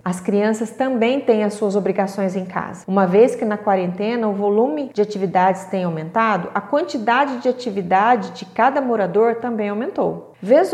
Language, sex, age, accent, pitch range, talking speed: Portuguese, female, 30-49, Brazilian, 200-280 Hz, 170 wpm